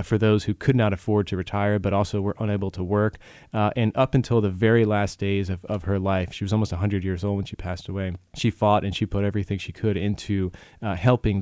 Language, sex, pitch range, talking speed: English, male, 95-110 Hz, 245 wpm